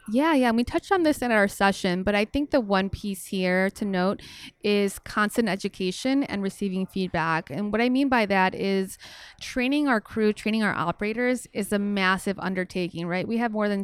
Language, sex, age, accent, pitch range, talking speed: English, female, 20-39, American, 190-230 Hz, 205 wpm